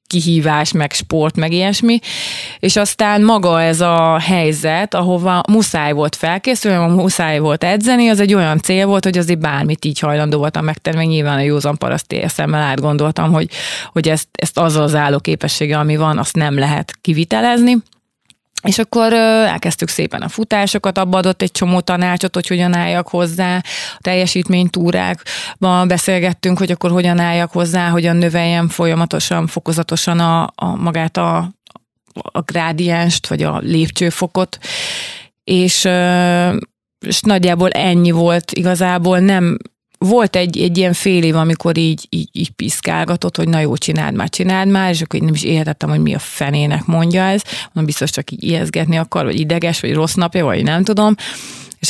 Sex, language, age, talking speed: female, Hungarian, 30-49, 160 wpm